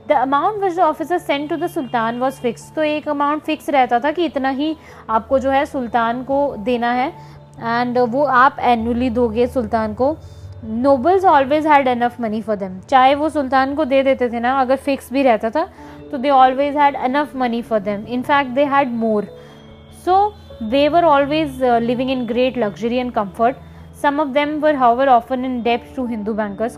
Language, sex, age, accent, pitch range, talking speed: Hindi, female, 20-39, native, 235-285 Hz, 205 wpm